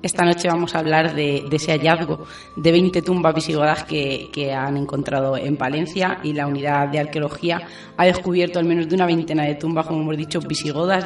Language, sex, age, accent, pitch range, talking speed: Spanish, female, 20-39, Spanish, 155-175 Hz, 200 wpm